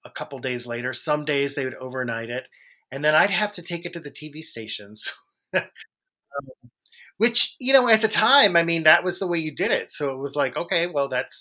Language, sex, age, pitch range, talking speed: English, male, 30-49, 125-155 Hz, 230 wpm